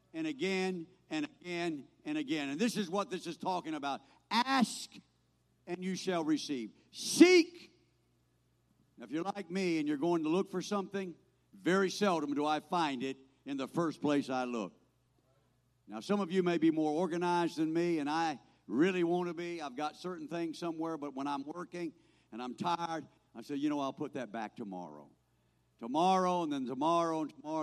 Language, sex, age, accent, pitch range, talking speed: English, male, 60-79, American, 140-195 Hz, 190 wpm